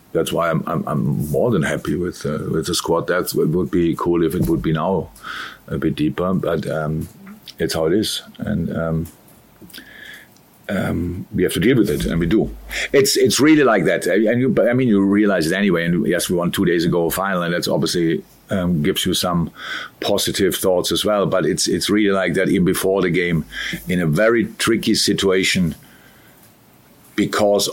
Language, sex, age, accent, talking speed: English, male, 50-69, German, 200 wpm